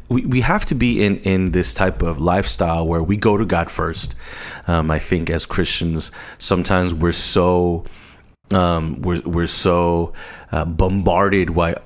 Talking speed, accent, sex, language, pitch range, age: 160 wpm, American, male, English, 85-100 Hz, 30-49